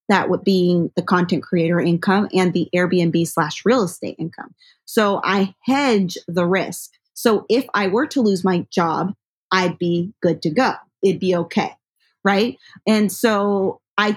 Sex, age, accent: female, 20-39, American